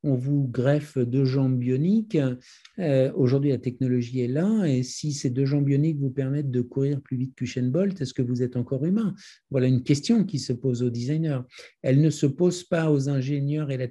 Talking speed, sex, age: 210 wpm, male, 50-69